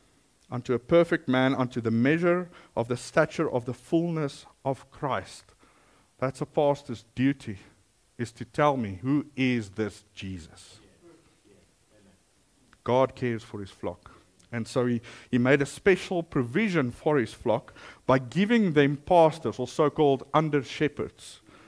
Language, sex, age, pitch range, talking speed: English, male, 50-69, 120-160 Hz, 140 wpm